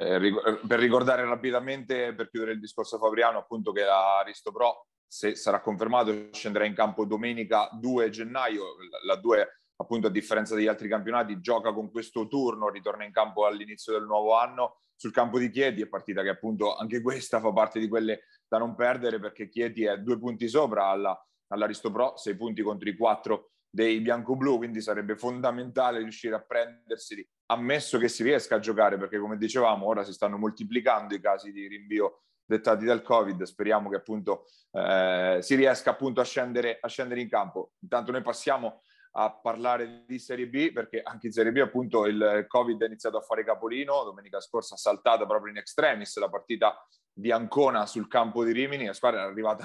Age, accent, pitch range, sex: 30-49, native, 105-125 Hz, male